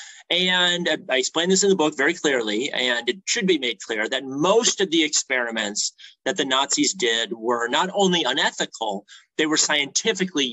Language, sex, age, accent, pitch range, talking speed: Spanish, male, 30-49, American, 130-190 Hz, 175 wpm